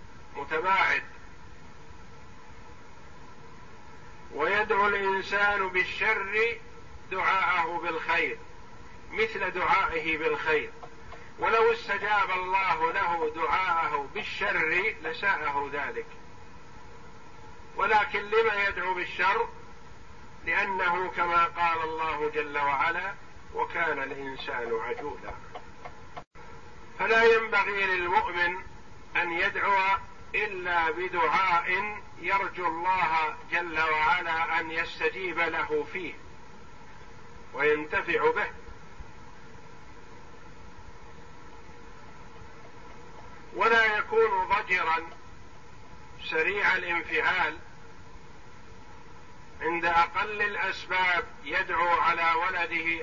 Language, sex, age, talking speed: Arabic, male, 50-69, 65 wpm